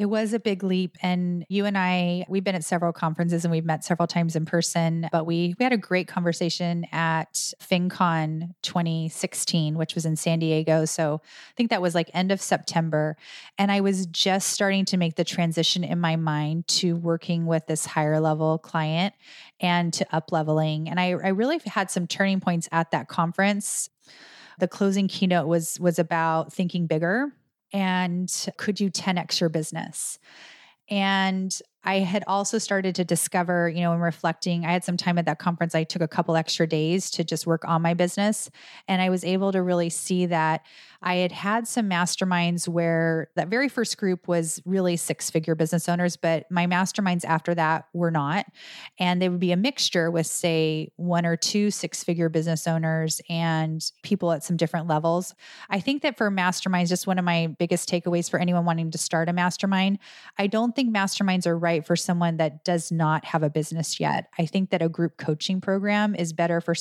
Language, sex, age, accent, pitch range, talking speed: English, female, 30-49, American, 165-190 Hz, 195 wpm